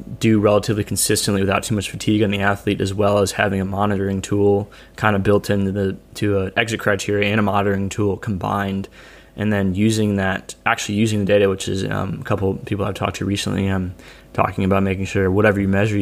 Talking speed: 215 wpm